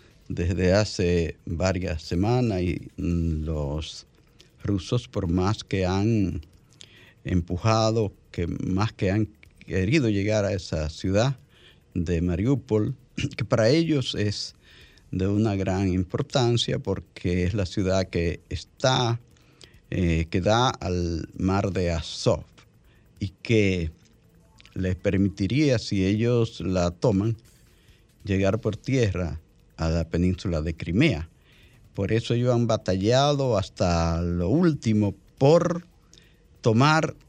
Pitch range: 90-120 Hz